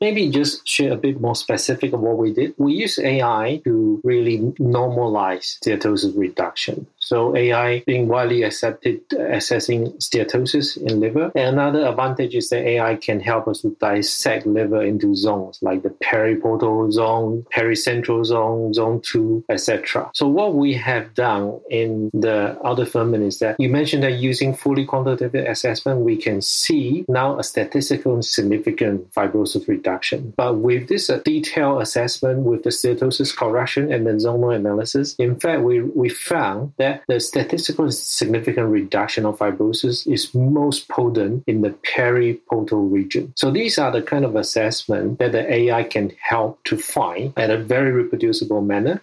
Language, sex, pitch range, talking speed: English, male, 115-145 Hz, 160 wpm